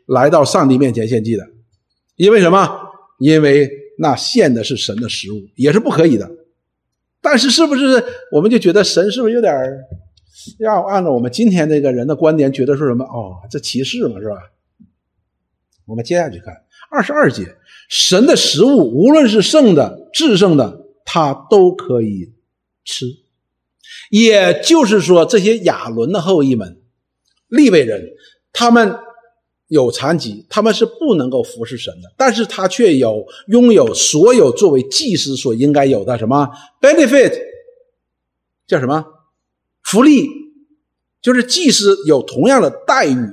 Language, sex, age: Chinese, male, 50-69